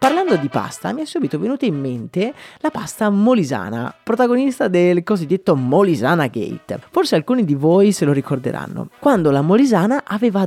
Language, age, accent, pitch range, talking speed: Italian, 20-39, native, 135-200 Hz, 160 wpm